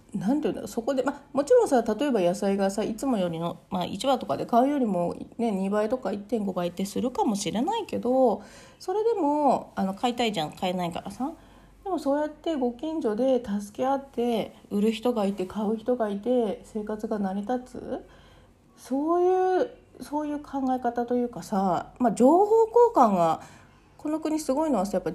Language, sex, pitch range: Japanese, female, 195-280 Hz